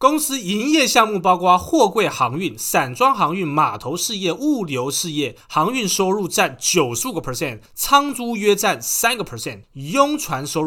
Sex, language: male, Chinese